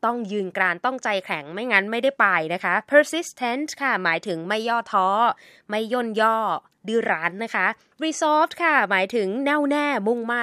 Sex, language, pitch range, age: female, Thai, 175-235 Hz, 20-39